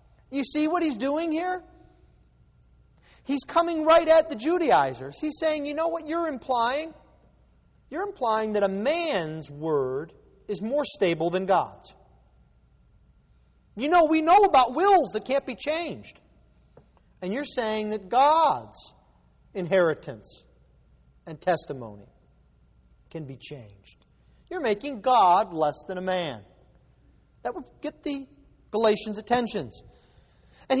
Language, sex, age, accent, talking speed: English, male, 40-59, American, 125 wpm